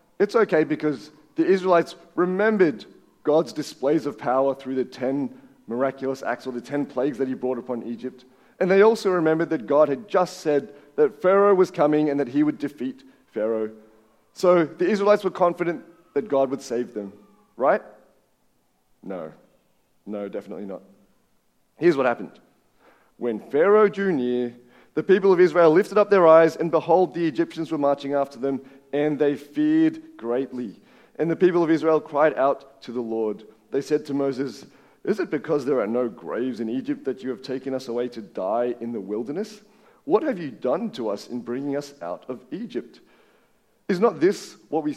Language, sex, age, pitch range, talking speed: English, male, 30-49, 130-185 Hz, 180 wpm